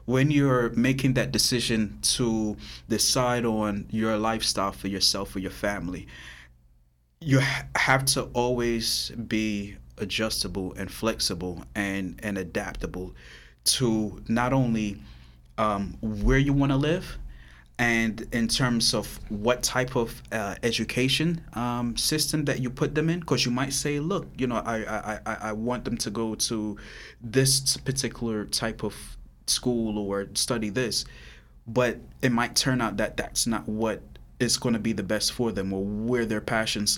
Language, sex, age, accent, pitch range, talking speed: English, male, 20-39, American, 105-125 Hz, 155 wpm